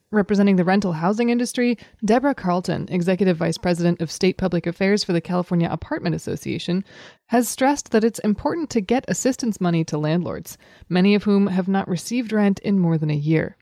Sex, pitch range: female, 165-210 Hz